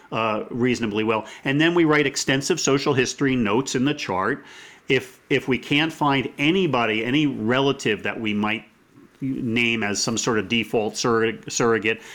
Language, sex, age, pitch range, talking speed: English, male, 40-59, 115-145 Hz, 155 wpm